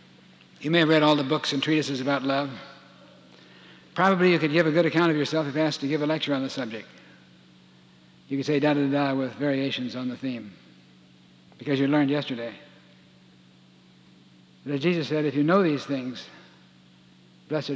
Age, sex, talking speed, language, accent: 60-79, male, 175 wpm, English, American